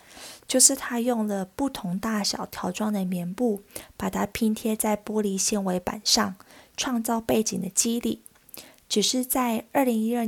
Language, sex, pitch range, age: Chinese, female, 195-230 Hz, 20-39